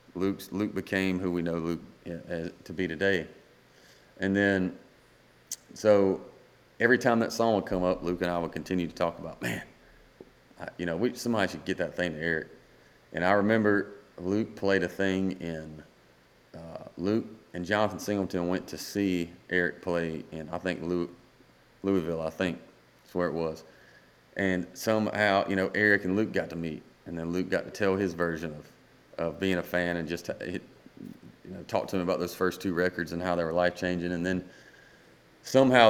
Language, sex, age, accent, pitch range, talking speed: English, male, 30-49, American, 85-100 Hz, 190 wpm